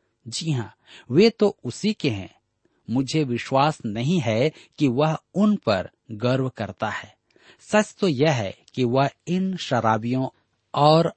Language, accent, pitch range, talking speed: Hindi, native, 110-160 Hz, 145 wpm